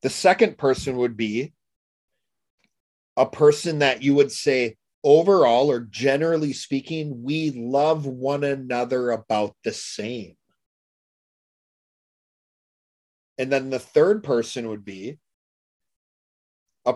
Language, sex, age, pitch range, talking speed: English, male, 30-49, 110-150 Hz, 105 wpm